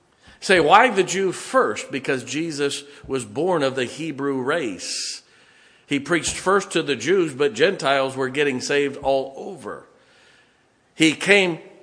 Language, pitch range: English, 130-185 Hz